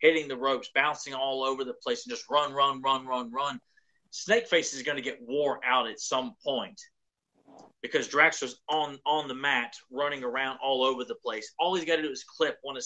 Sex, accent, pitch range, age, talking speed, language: male, American, 125-170 Hz, 30-49, 215 wpm, English